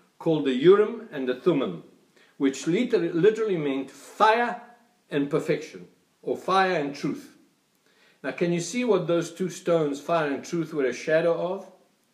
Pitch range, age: 135-200 Hz, 60-79